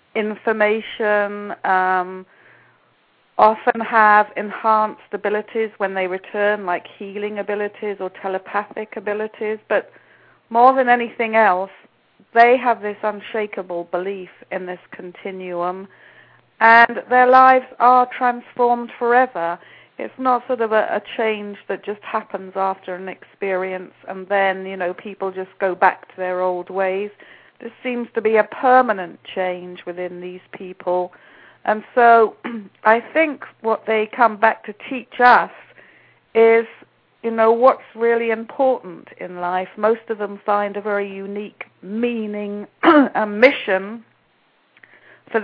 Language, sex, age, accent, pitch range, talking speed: English, female, 40-59, British, 195-230 Hz, 130 wpm